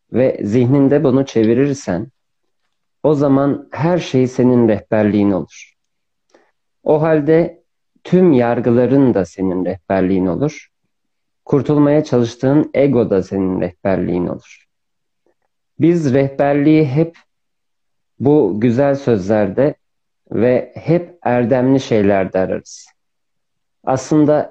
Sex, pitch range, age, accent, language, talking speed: male, 110-145 Hz, 50-69, native, Turkish, 95 wpm